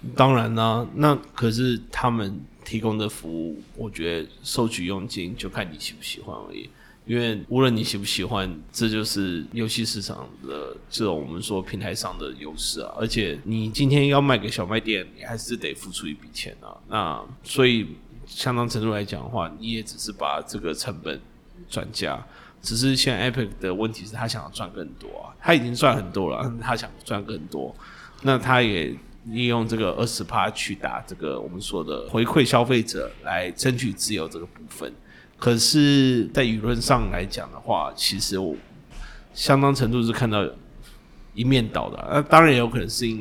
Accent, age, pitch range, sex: native, 20-39, 100-120 Hz, male